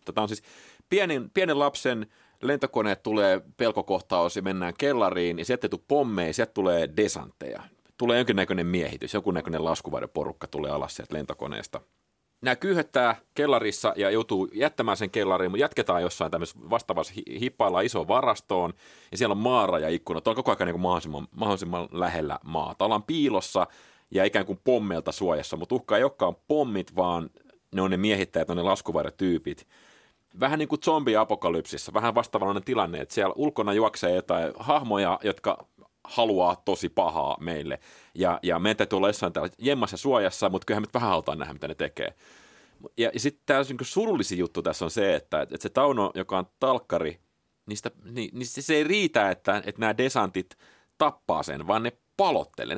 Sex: male